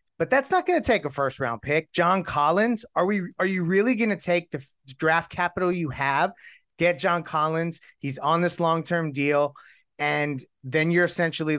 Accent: American